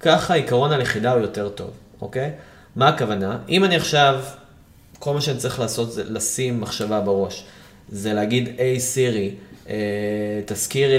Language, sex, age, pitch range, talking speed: Hebrew, male, 20-39, 105-130 Hz, 145 wpm